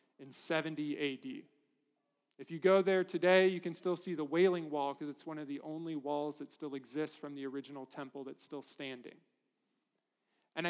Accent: American